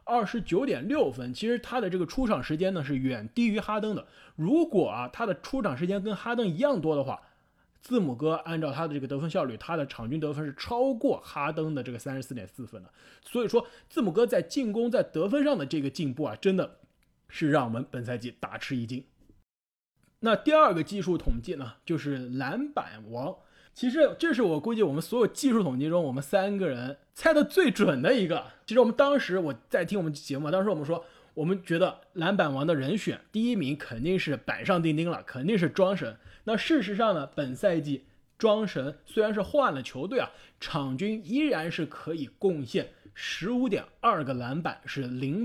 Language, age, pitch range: Chinese, 20-39, 140-235 Hz